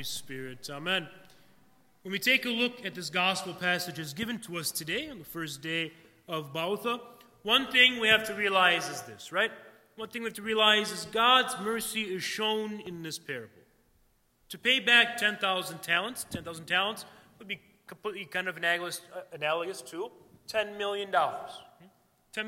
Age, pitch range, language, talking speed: 30-49, 175-225 Hz, English, 165 wpm